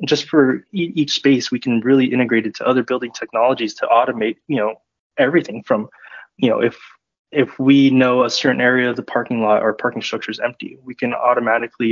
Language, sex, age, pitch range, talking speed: English, male, 20-39, 115-135 Hz, 200 wpm